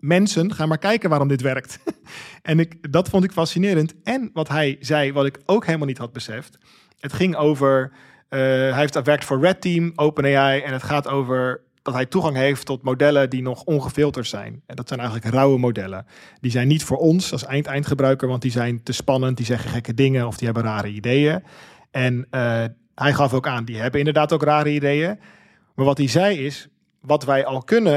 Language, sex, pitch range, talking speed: Dutch, male, 130-150 Hz, 210 wpm